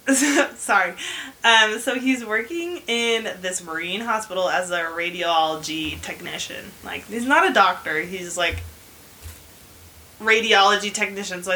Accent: American